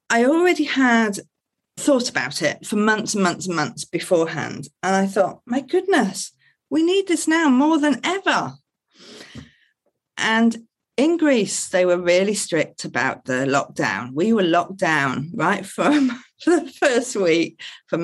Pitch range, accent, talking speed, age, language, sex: 175-260 Hz, British, 150 wpm, 40-59, English, female